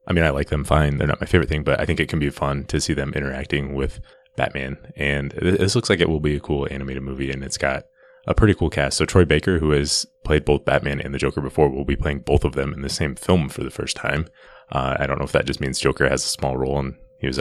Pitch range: 70-80 Hz